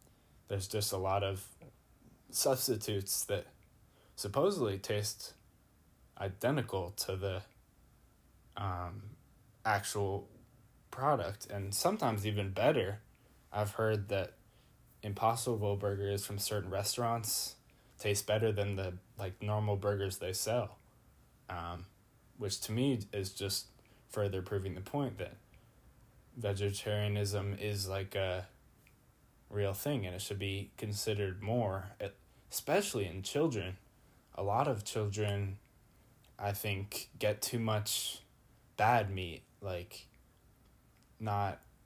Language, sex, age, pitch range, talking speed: English, male, 10-29, 100-110 Hz, 110 wpm